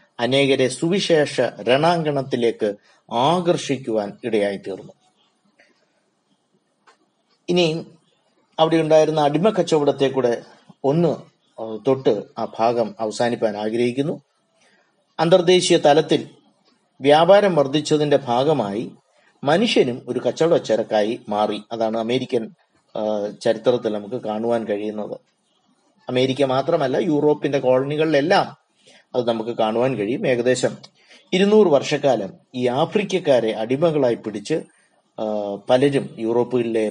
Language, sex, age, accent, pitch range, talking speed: Malayalam, male, 30-49, native, 115-155 Hz, 75 wpm